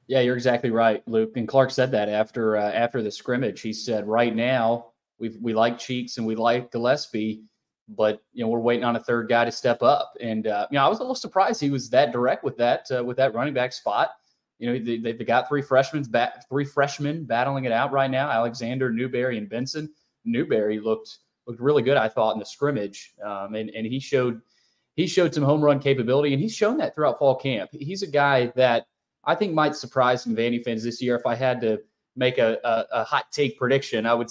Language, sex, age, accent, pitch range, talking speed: English, male, 20-39, American, 120-150 Hz, 230 wpm